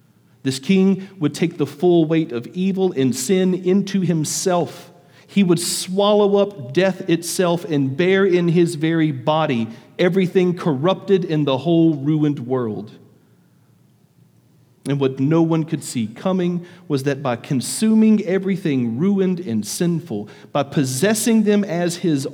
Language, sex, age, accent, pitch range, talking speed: English, male, 40-59, American, 135-180 Hz, 140 wpm